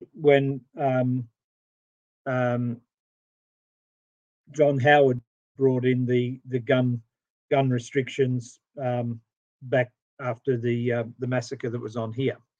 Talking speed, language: 110 wpm, English